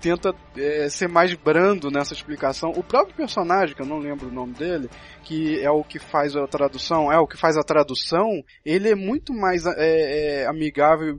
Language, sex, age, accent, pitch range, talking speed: Portuguese, male, 20-39, Brazilian, 145-170 Hz, 200 wpm